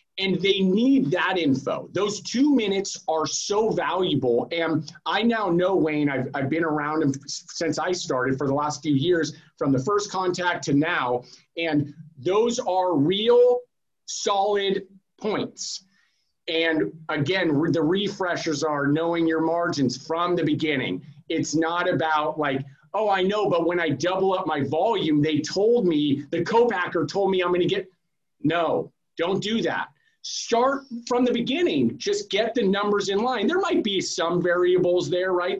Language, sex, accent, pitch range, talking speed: English, male, American, 155-195 Hz, 165 wpm